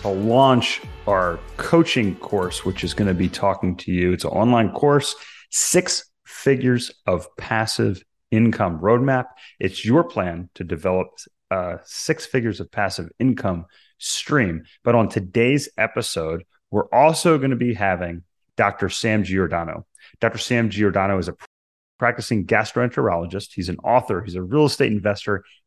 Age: 30-49